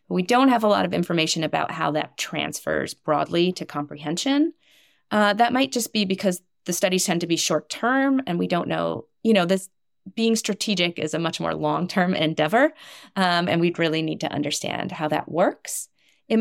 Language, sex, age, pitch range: English, female, 30-49, 155-200 Hz